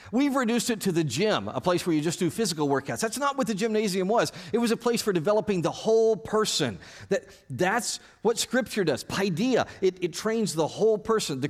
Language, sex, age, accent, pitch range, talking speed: English, male, 50-69, American, 130-215 Hz, 215 wpm